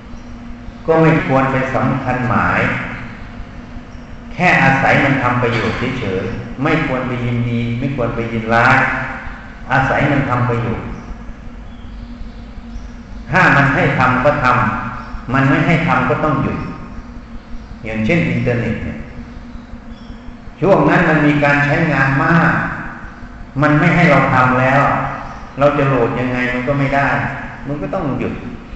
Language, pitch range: English, 115-145 Hz